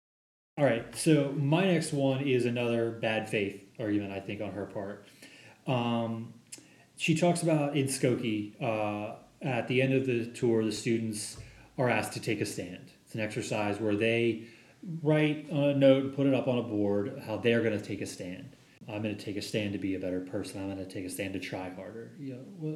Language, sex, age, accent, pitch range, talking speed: English, male, 30-49, American, 110-140 Hz, 210 wpm